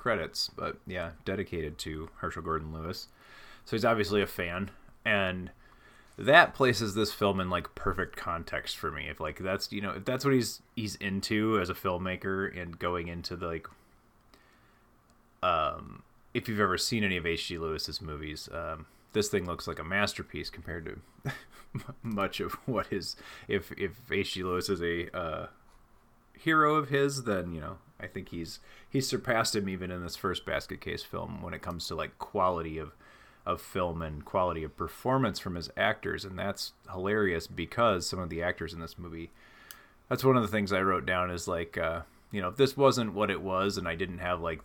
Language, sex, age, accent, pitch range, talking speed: English, male, 30-49, American, 85-105 Hz, 190 wpm